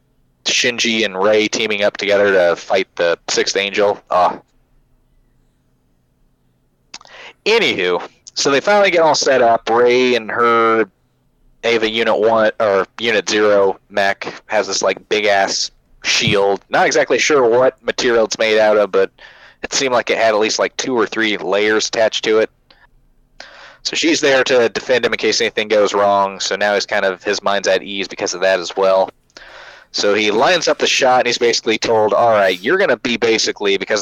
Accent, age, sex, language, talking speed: American, 20-39, male, English, 185 wpm